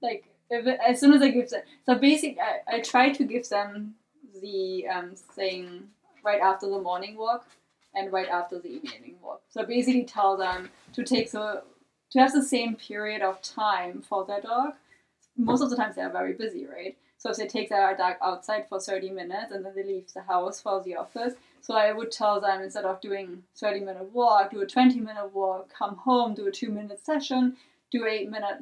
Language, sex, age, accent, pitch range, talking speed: English, female, 20-39, German, 200-255 Hz, 210 wpm